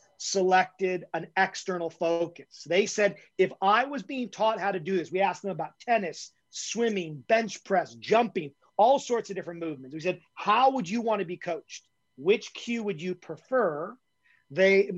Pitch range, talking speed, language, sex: 170-200 Hz, 170 wpm, English, male